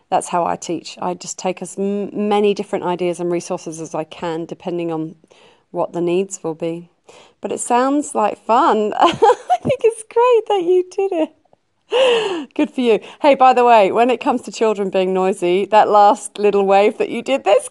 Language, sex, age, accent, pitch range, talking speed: English, female, 40-59, British, 170-240 Hz, 195 wpm